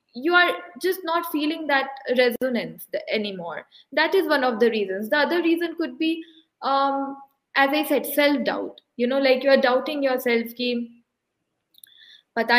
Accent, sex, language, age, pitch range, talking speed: native, female, Hindi, 20-39, 235-310 Hz, 160 wpm